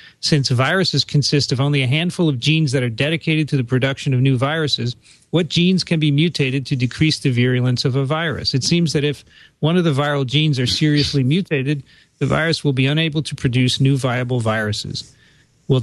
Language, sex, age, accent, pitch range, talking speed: English, male, 40-59, American, 125-150 Hz, 200 wpm